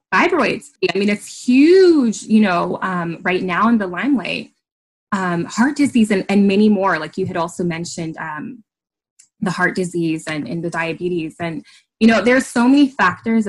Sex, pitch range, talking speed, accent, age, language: female, 175-215 Hz, 180 wpm, American, 20-39, English